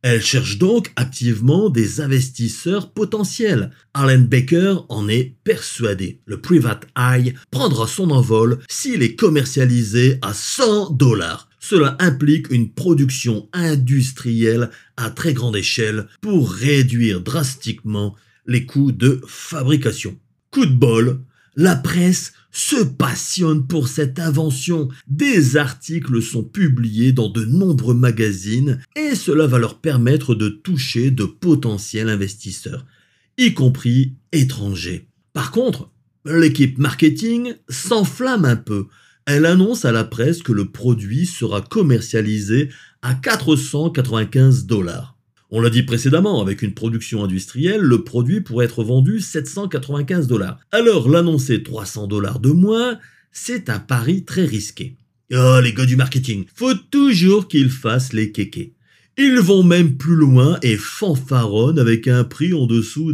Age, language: 50-69, French